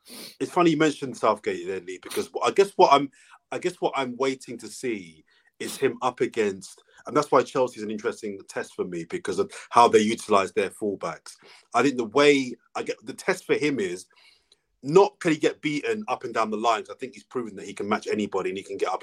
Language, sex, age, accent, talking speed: English, male, 30-49, British, 235 wpm